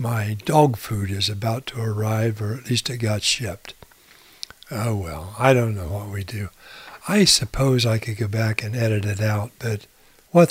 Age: 60-79